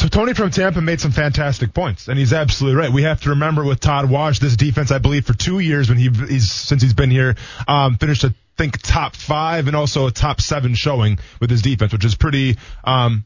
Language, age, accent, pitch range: English, 20-39, American, 125-160 Hz